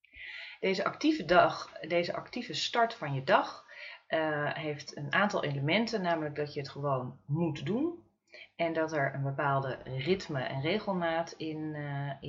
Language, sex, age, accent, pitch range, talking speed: Dutch, female, 30-49, Dutch, 140-170 Hz, 150 wpm